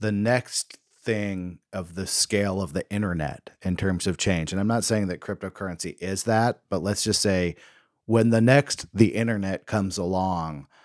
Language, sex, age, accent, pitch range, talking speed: English, male, 40-59, American, 95-115 Hz, 175 wpm